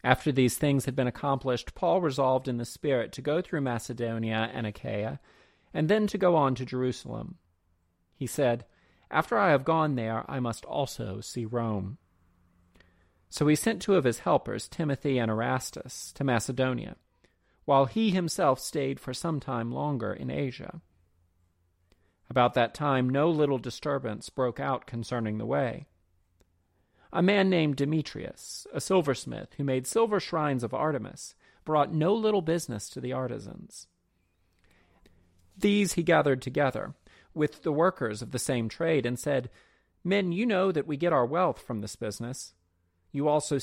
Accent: American